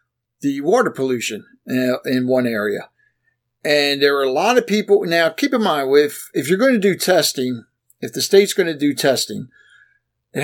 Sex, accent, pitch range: male, American, 130-170 Hz